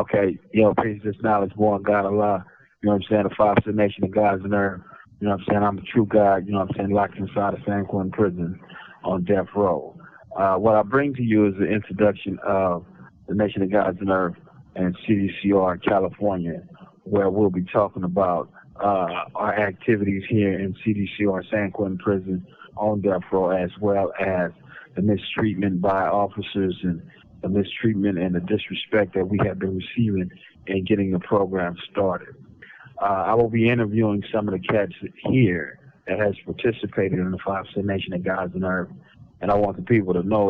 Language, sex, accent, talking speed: English, male, American, 195 wpm